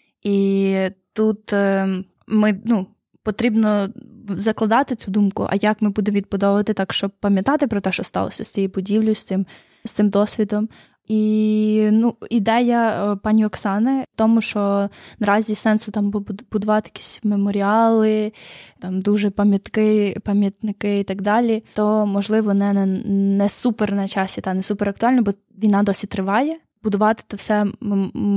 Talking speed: 145 wpm